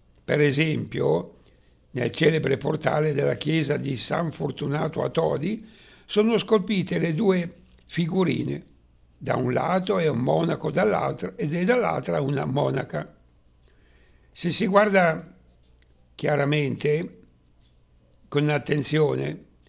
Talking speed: 105 wpm